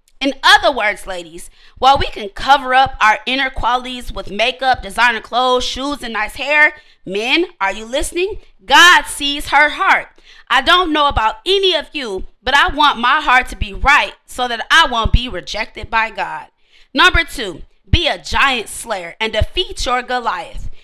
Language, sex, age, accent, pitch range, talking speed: English, female, 20-39, American, 230-325 Hz, 175 wpm